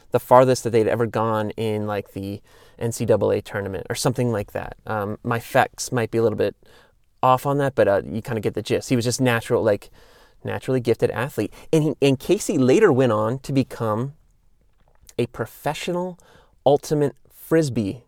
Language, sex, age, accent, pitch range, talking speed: English, male, 30-49, American, 115-145 Hz, 180 wpm